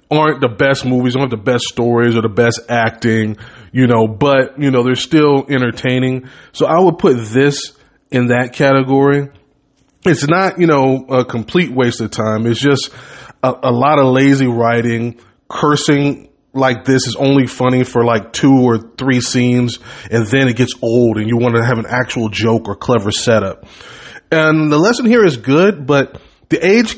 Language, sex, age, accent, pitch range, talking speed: English, male, 20-39, American, 120-150 Hz, 180 wpm